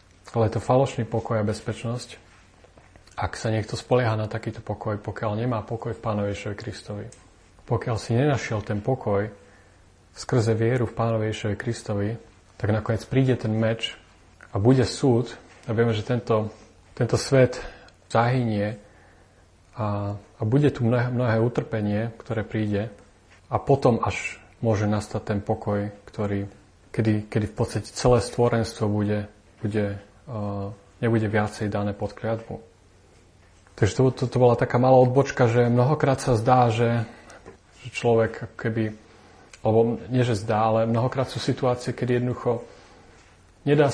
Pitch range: 100-120 Hz